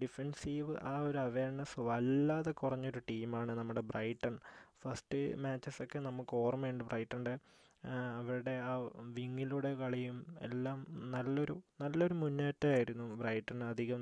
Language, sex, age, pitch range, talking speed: Malayalam, male, 20-39, 120-140 Hz, 105 wpm